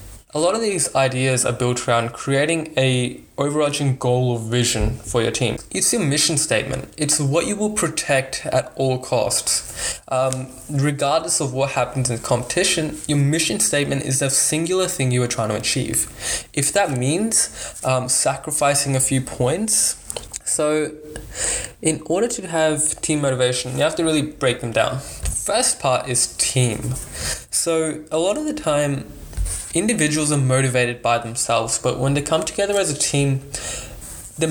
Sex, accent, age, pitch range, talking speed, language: male, Australian, 10-29, 125-155 Hz, 165 wpm, English